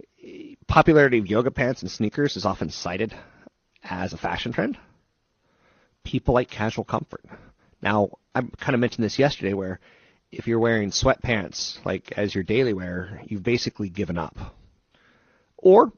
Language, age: English, 30-49